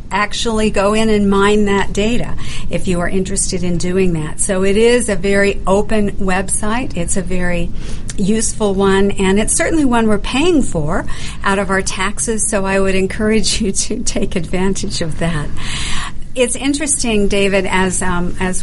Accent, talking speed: American, 170 wpm